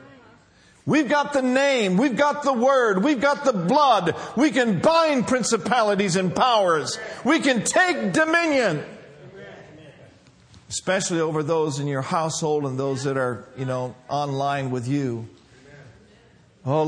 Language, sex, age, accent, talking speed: English, male, 50-69, American, 135 wpm